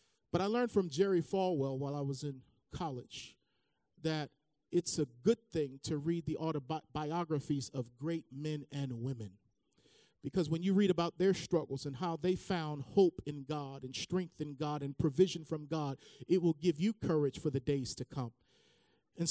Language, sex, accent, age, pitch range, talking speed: English, male, American, 40-59, 140-180 Hz, 180 wpm